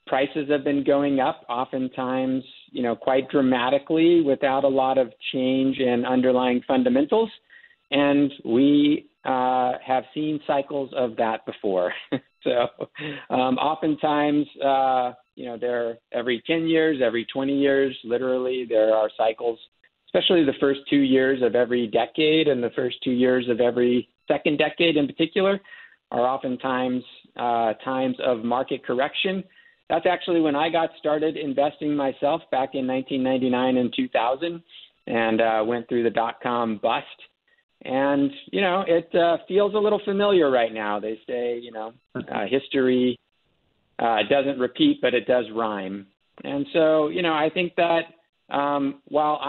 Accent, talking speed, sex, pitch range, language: American, 150 wpm, male, 120-150 Hz, English